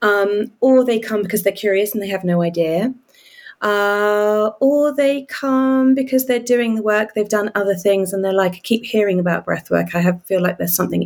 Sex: female